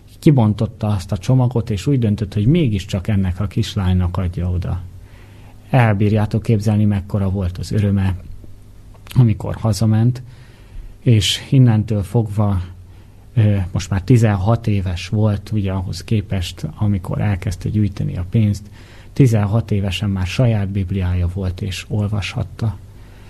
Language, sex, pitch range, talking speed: Hungarian, male, 100-115 Hz, 120 wpm